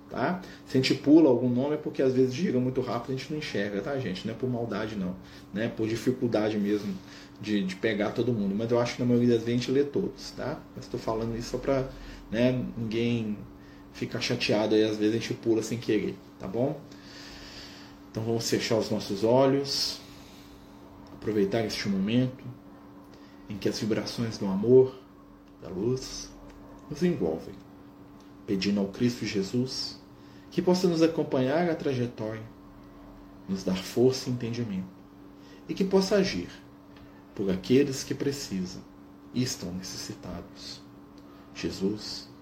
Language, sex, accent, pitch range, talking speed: Portuguese, male, Brazilian, 95-130 Hz, 160 wpm